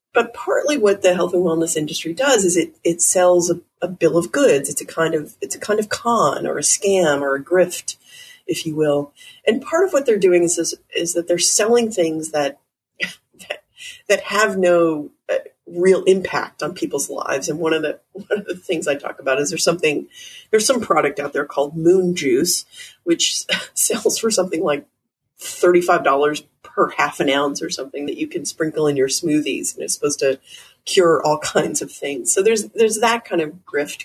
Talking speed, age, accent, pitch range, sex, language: 205 wpm, 30-49, American, 150-240 Hz, female, English